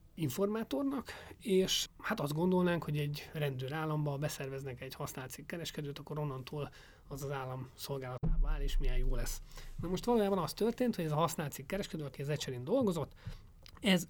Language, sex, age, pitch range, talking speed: Hungarian, male, 30-49, 135-180 Hz, 170 wpm